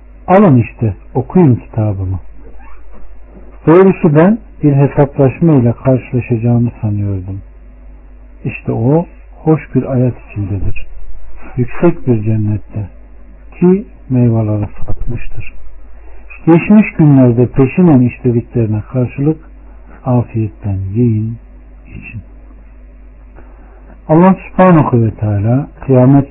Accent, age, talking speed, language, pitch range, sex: native, 60-79, 80 wpm, Turkish, 105-135 Hz, male